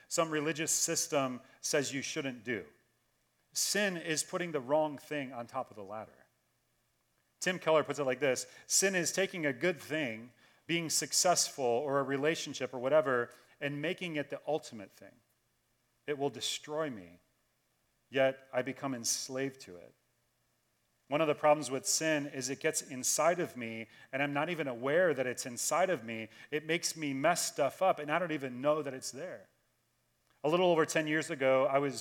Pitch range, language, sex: 130-160 Hz, English, male